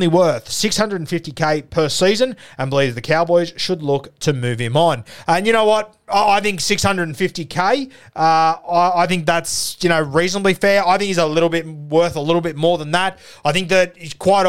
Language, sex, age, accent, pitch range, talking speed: English, male, 20-39, Australian, 155-180 Hz, 195 wpm